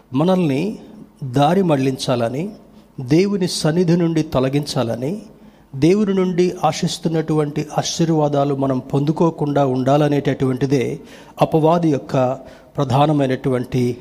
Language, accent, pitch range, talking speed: Telugu, native, 135-170 Hz, 75 wpm